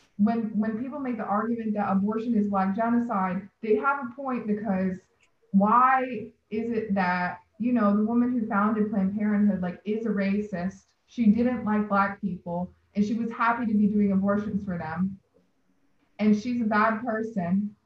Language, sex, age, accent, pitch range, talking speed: English, female, 20-39, American, 200-240 Hz, 175 wpm